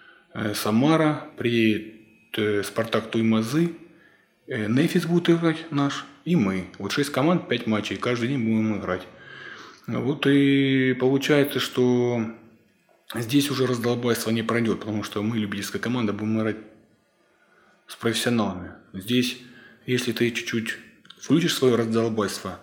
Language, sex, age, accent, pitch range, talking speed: Russian, male, 20-39, native, 110-130 Hz, 120 wpm